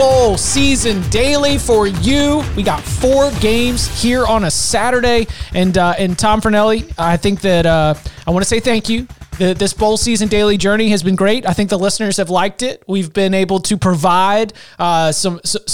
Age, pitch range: 30-49, 170-215 Hz